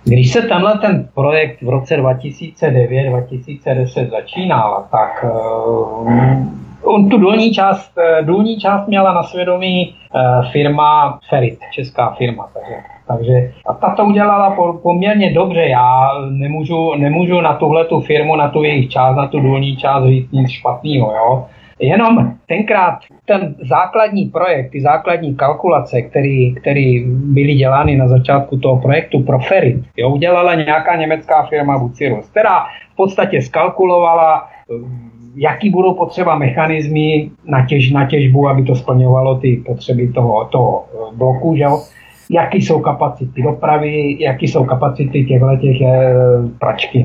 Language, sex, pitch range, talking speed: Czech, male, 130-170 Hz, 130 wpm